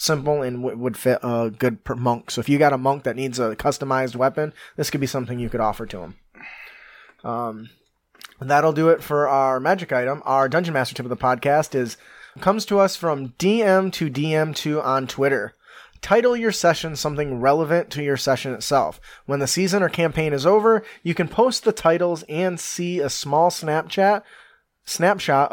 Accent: American